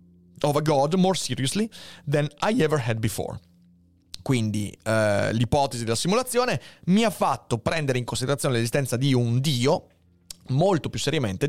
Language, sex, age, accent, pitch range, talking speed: Italian, male, 30-49, native, 105-140 Hz, 125 wpm